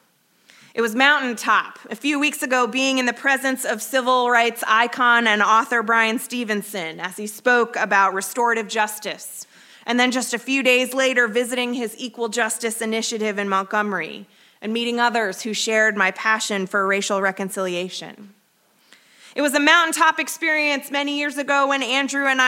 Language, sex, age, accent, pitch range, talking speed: English, female, 20-39, American, 210-255 Hz, 160 wpm